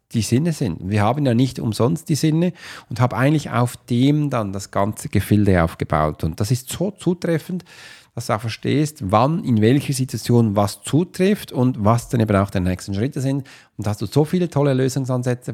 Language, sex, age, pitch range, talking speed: German, male, 40-59, 110-150 Hz, 200 wpm